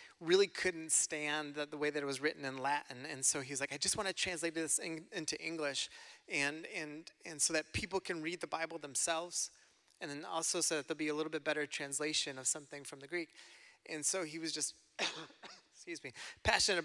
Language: English